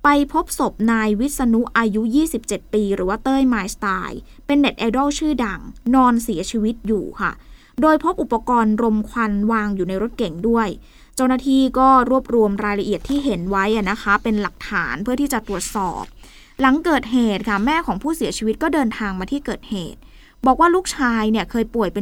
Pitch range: 210-275 Hz